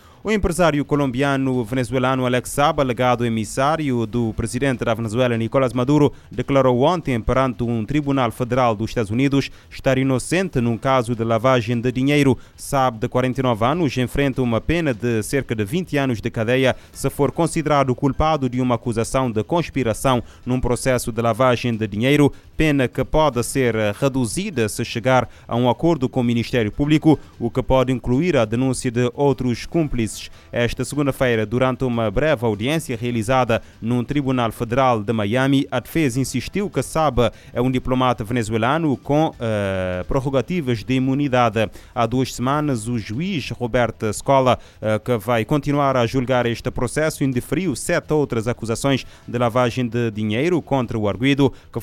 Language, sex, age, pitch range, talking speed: Portuguese, male, 20-39, 115-140 Hz, 155 wpm